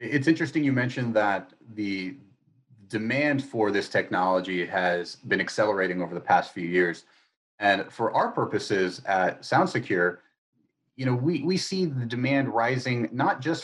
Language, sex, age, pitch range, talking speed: English, male, 30-49, 100-145 Hz, 150 wpm